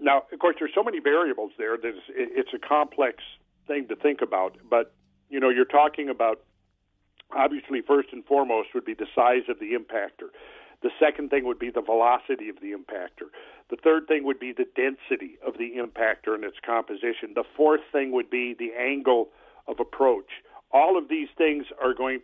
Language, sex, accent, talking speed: English, male, American, 190 wpm